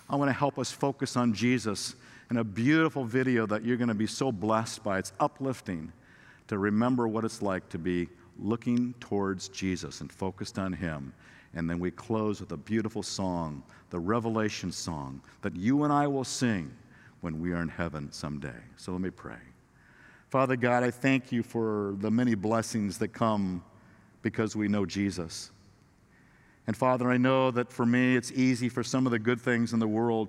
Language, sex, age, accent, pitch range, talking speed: English, male, 50-69, American, 100-120 Hz, 190 wpm